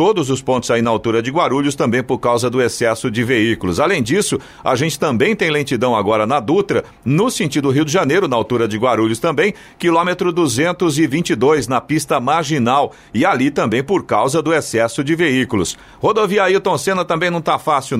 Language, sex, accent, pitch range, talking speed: Portuguese, male, Brazilian, 130-175 Hz, 185 wpm